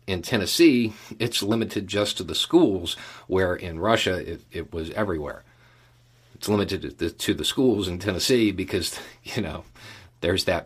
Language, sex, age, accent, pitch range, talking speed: English, male, 50-69, American, 90-120 Hz, 160 wpm